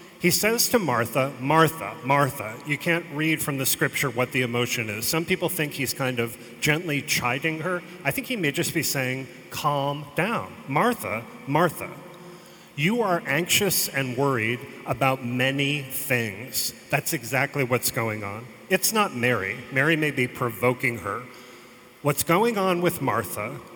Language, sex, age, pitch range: English, male, 40-59, 125-170 Hz